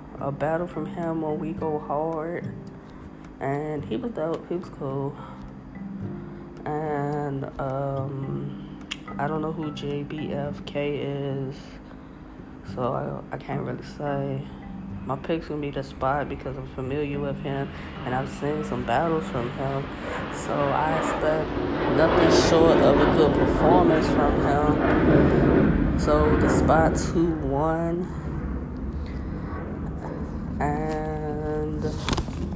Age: 20-39